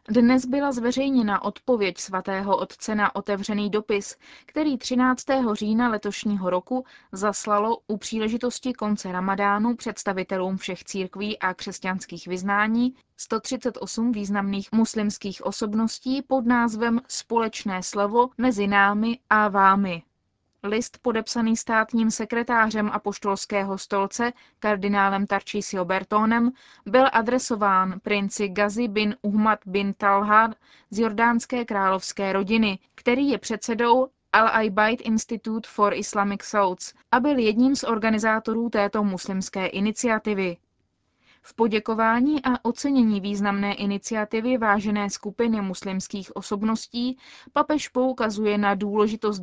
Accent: native